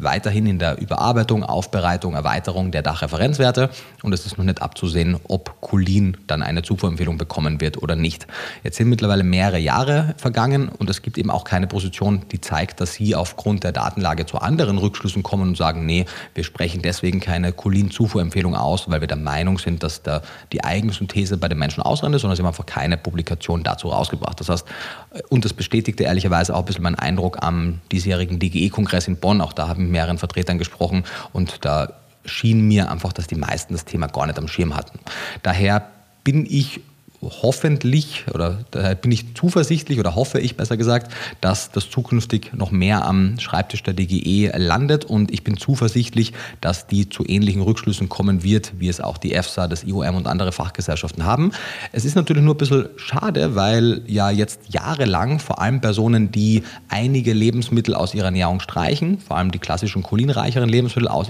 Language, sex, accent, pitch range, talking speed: German, male, German, 90-115 Hz, 185 wpm